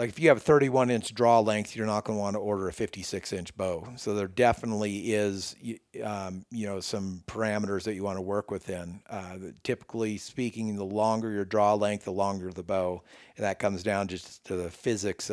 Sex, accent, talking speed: male, American, 215 wpm